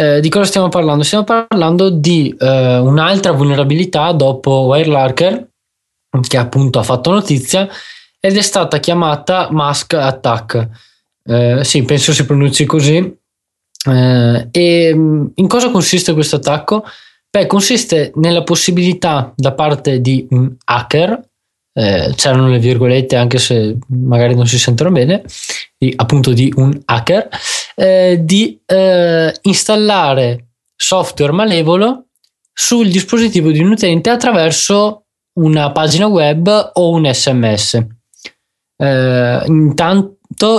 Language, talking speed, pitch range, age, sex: Italian, 120 wpm, 130-180 Hz, 20-39, male